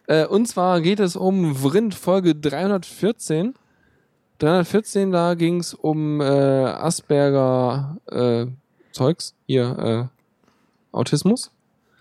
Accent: German